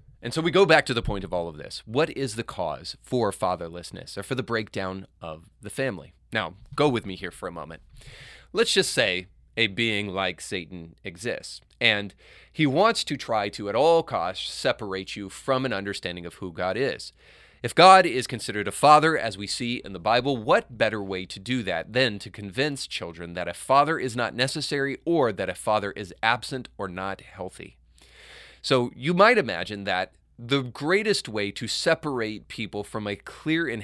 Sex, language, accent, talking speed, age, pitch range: male, English, American, 195 wpm, 30-49, 95-130 Hz